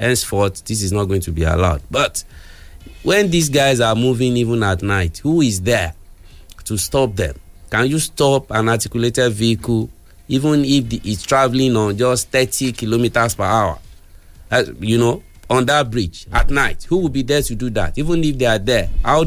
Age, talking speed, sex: 50-69, 185 wpm, male